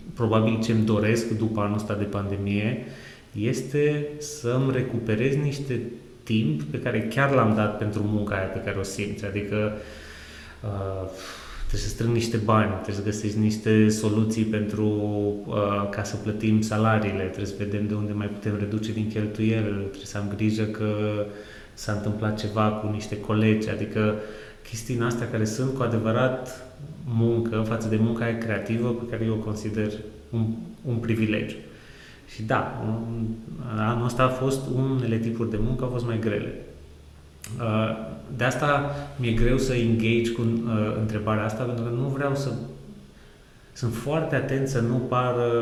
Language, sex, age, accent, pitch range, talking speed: Romanian, male, 20-39, native, 105-120 Hz, 160 wpm